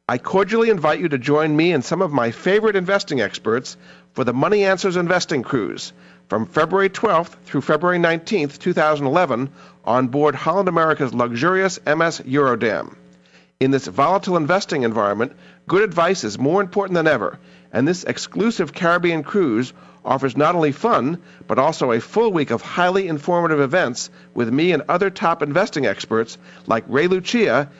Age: 50-69